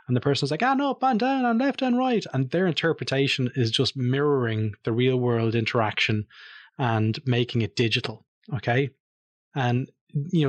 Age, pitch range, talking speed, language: 30-49, 115-140 Hz, 170 wpm, English